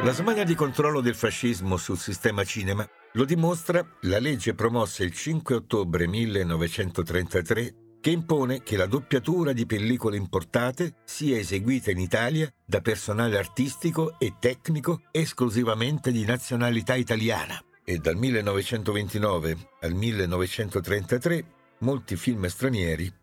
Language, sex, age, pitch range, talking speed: Italian, male, 50-69, 95-130 Hz, 120 wpm